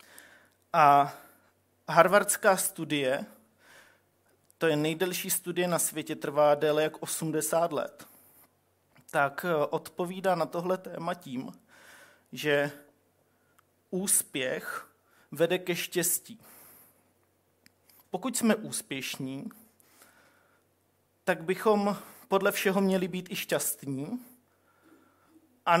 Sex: male